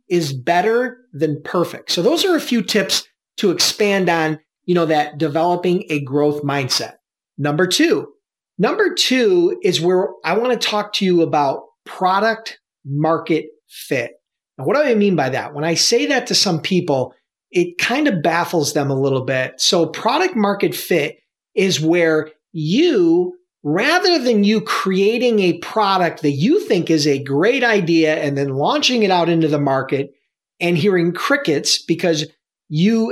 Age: 40-59